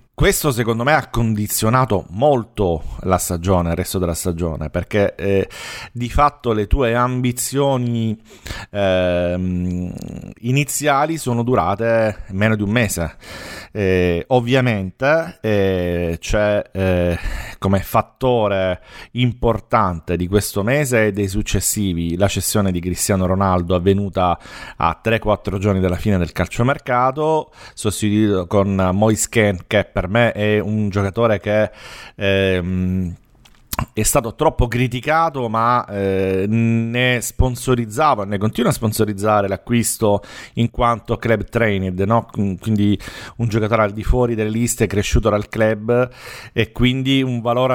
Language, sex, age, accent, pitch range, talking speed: Italian, male, 40-59, native, 100-120 Hz, 125 wpm